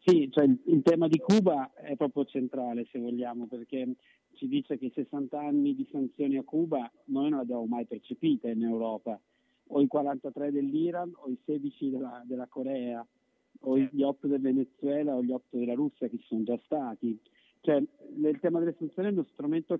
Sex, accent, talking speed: male, native, 190 wpm